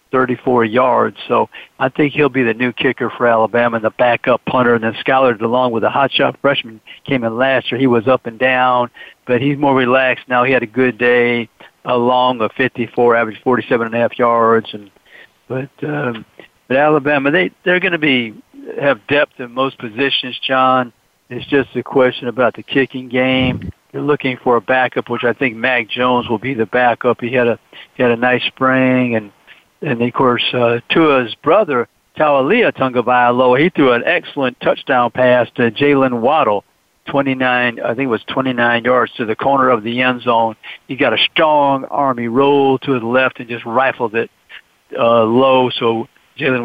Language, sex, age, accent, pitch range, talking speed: English, male, 60-79, American, 120-135 Hz, 195 wpm